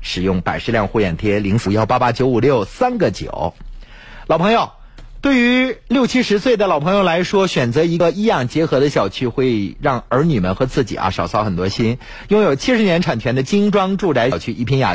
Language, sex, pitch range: Chinese, male, 105-170 Hz